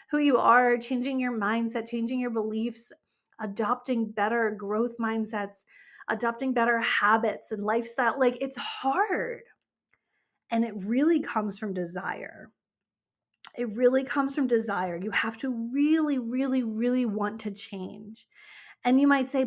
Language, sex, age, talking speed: English, female, 30-49, 140 wpm